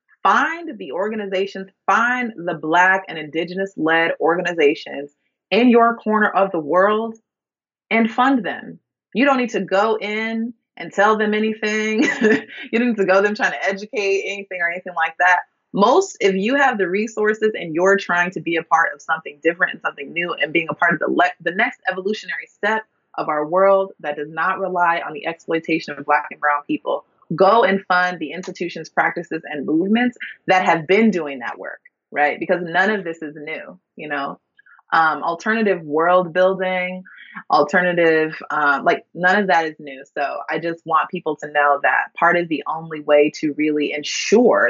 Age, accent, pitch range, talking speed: 30-49, American, 160-215 Hz, 185 wpm